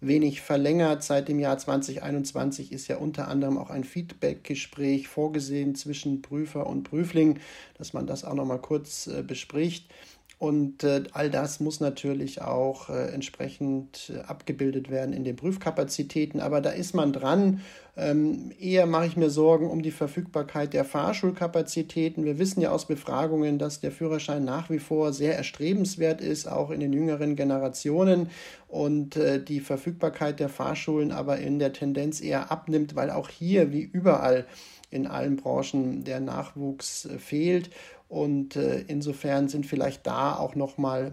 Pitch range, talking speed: 140-160 Hz, 150 wpm